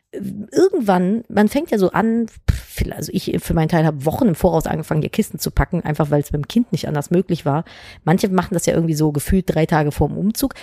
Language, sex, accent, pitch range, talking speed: German, female, German, 185-250 Hz, 225 wpm